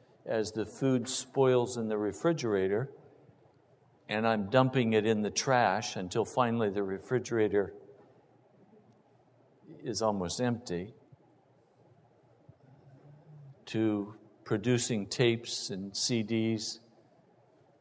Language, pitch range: English, 110-130 Hz